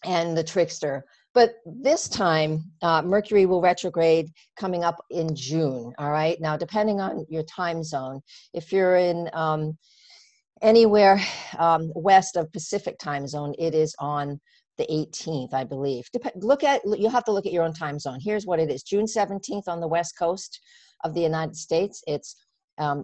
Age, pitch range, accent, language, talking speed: 50-69, 145-175 Hz, American, English, 180 wpm